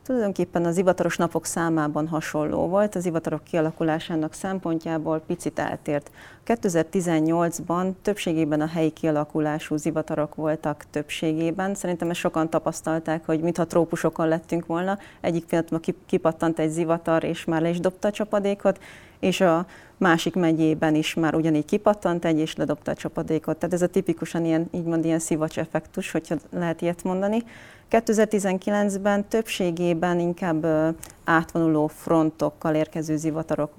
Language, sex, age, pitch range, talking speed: Hungarian, female, 30-49, 160-185 Hz, 135 wpm